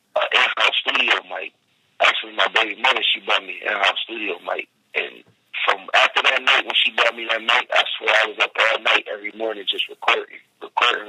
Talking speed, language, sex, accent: 210 wpm, English, male, American